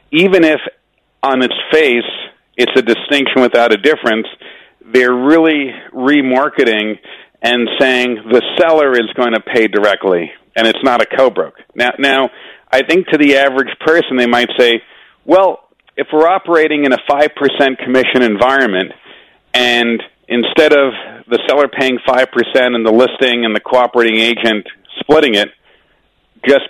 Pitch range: 115-140 Hz